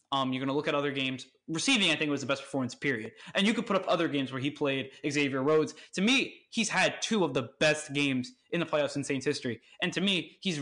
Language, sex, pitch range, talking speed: English, male, 135-170 Hz, 265 wpm